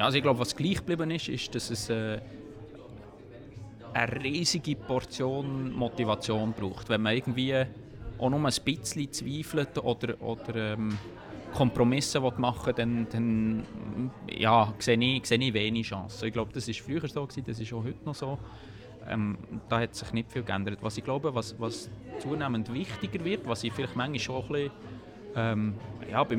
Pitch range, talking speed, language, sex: 110-130 Hz, 170 wpm, German, male